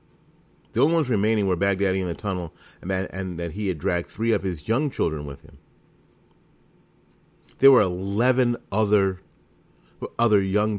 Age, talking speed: 40-59, 160 wpm